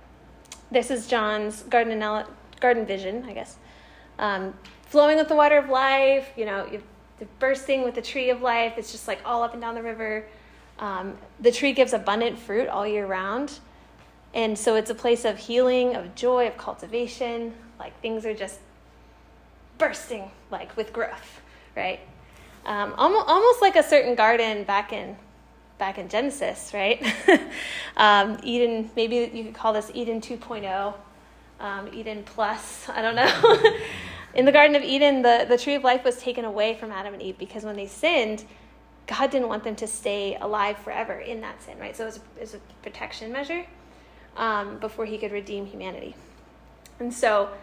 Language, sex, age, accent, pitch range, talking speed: English, female, 10-29, American, 210-250 Hz, 180 wpm